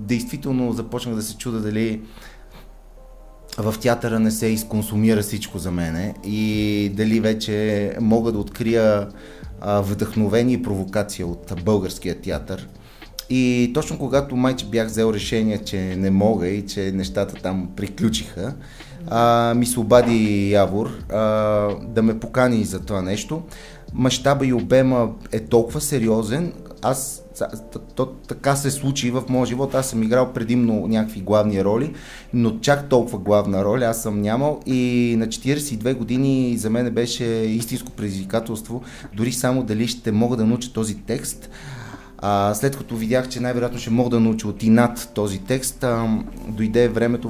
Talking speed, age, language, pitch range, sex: 140 wpm, 30-49, Bulgarian, 105-125 Hz, male